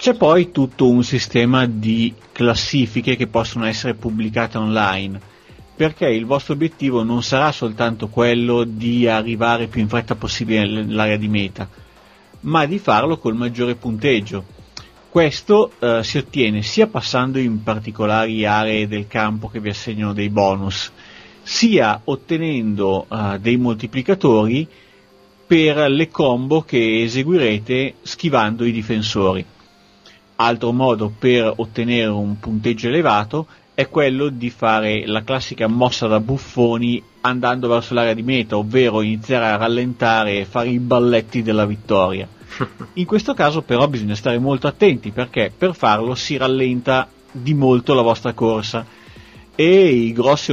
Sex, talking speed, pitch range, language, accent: male, 140 wpm, 110-130 Hz, Italian, native